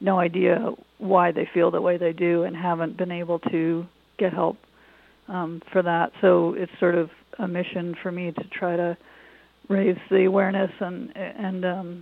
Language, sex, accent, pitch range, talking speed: English, female, American, 170-195 Hz, 180 wpm